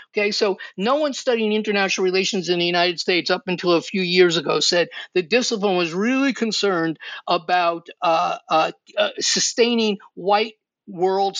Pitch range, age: 180-215 Hz, 50-69